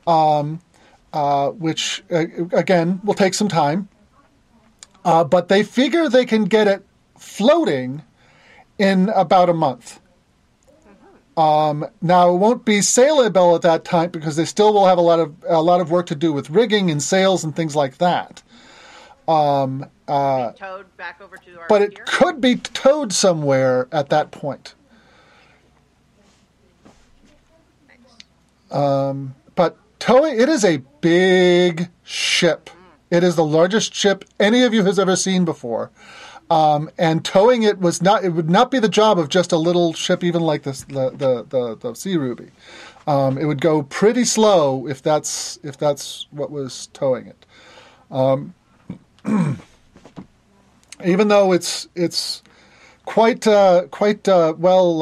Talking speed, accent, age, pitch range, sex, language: 145 wpm, American, 40-59, 150-195 Hz, male, English